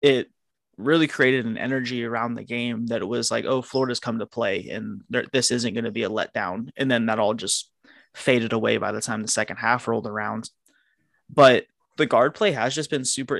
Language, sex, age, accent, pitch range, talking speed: English, male, 20-39, American, 115-130 Hz, 215 wpm